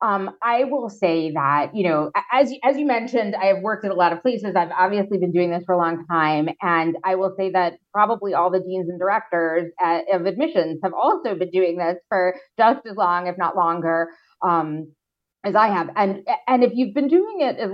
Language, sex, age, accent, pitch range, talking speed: English, female, 30-49, American, 175-215 Hz, 225 wpm